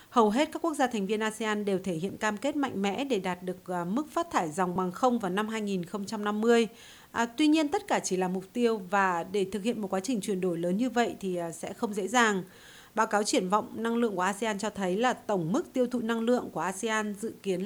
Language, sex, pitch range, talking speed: Vietnamese, female, 195-245 Hz, 250 wpm